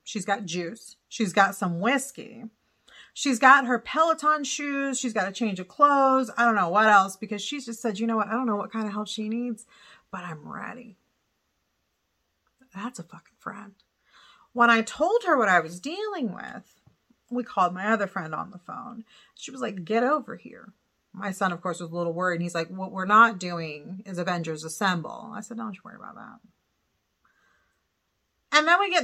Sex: female